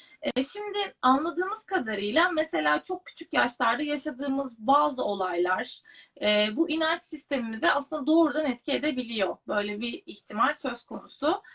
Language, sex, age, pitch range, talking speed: Turkish, female, 30-49, 240-315 Hz, 110 wpm